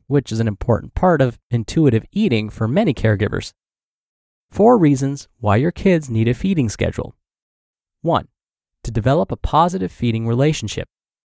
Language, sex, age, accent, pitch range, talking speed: English, male, 20-39, American, 110-155 Hz, 145 wpm